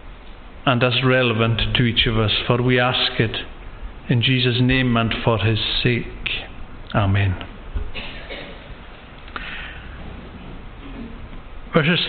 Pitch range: 110-180 Hz